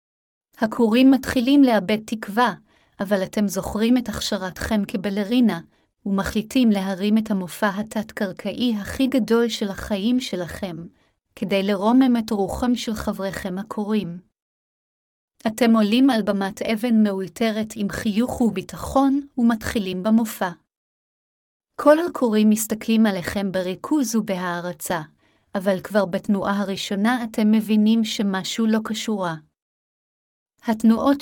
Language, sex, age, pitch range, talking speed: Hebrew, female, 30-49, 200-235 Hz, 105 wpm